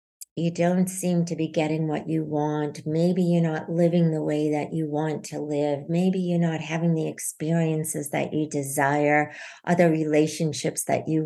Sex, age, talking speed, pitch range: female, 60-79, 175 wpm, 155-185 Hz